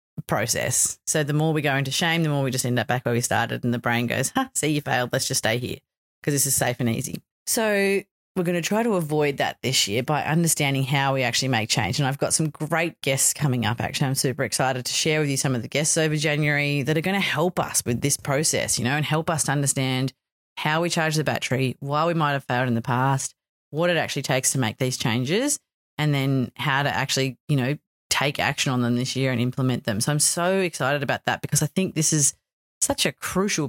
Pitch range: 125-155 Hz